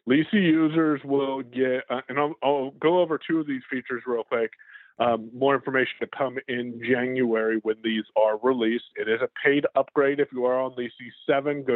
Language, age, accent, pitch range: English, 30-49, American, 130-175 Hz